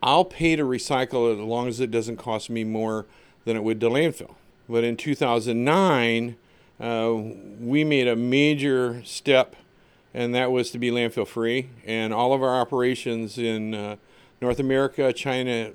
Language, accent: English, American